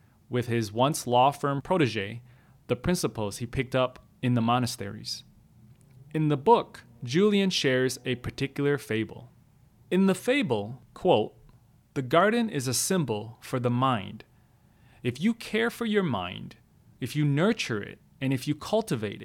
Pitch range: 120-155 Hz